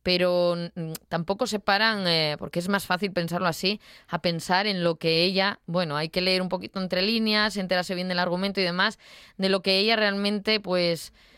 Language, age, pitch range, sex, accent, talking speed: Spanish, 20-39, 175-210 Hz, female, Spanish, 195 wpm